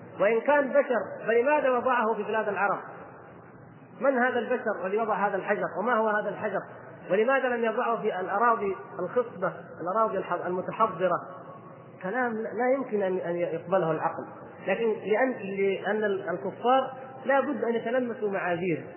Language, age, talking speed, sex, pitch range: Arabic, 30-49, 125 wpm, male, 180-225 Hz